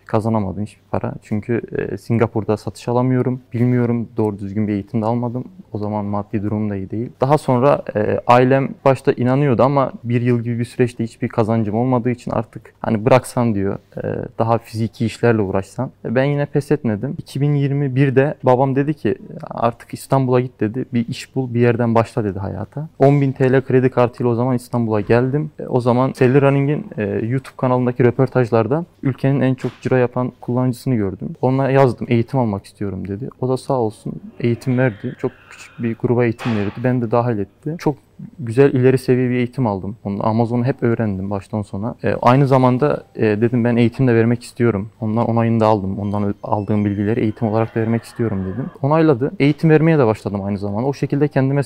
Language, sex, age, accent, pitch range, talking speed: Turkish, male, 30-49, native, 110-135 Hz, 185 wpm